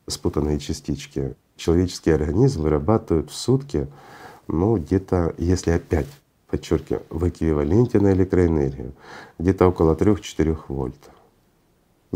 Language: Russian